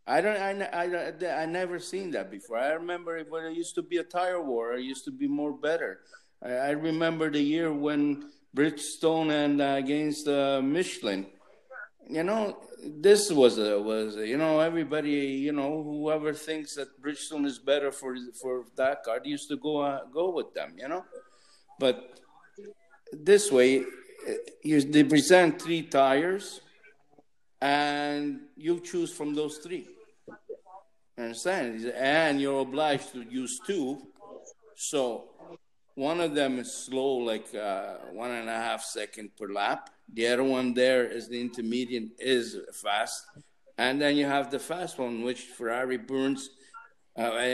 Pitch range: 130-175 Hz